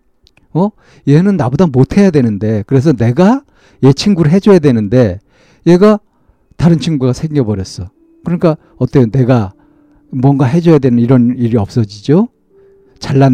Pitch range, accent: 110-165 Hz, native